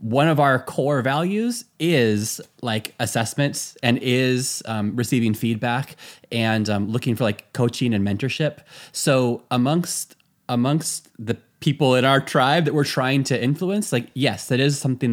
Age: 20-39